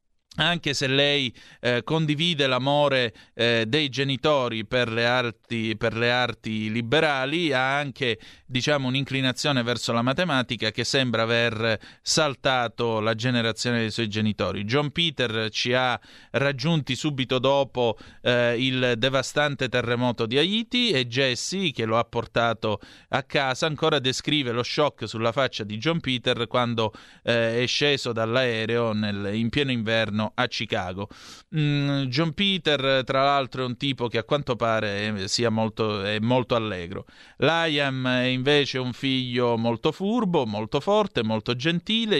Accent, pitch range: native, 115-145 Hz